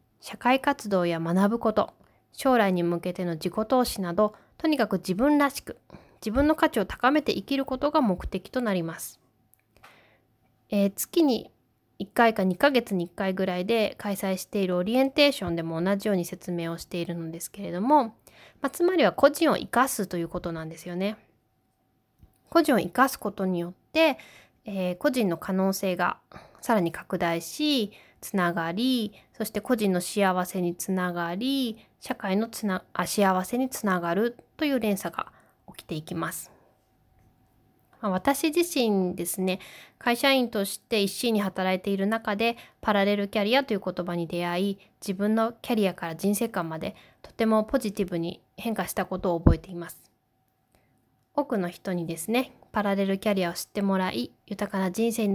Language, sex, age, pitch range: Japanese, female, 20-39, 175-230 Hz